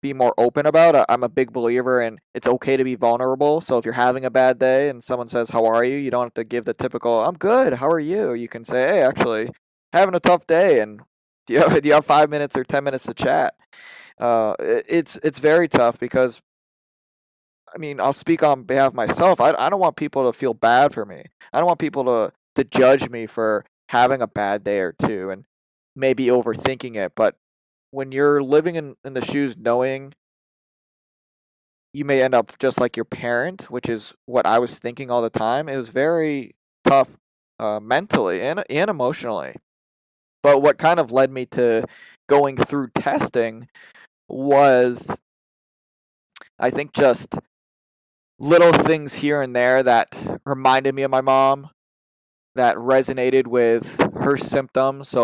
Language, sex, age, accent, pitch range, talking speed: English, male, 20-39, American, 120-140 Hz, 185 wpm